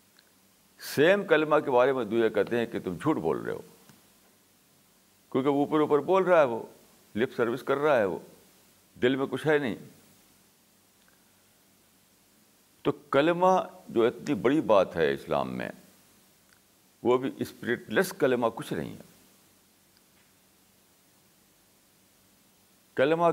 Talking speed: 130 wpm